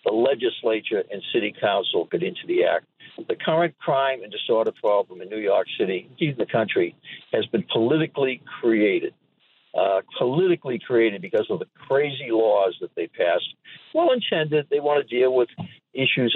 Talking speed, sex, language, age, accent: 165 wpm, male, English, 60-79, American